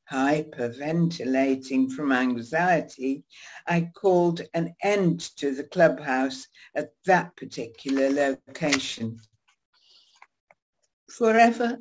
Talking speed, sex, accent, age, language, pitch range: 75 wpm, female, British, 60-79, English, 140-175 Hz